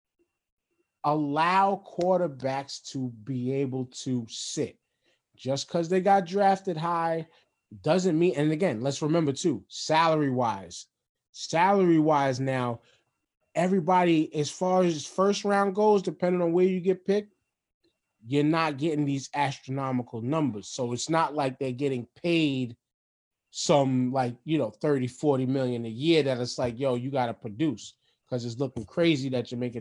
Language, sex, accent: English, male, American